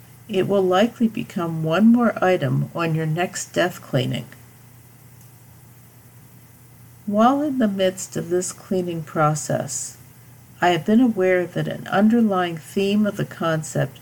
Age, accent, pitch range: 60-79, American, 130-205 Hz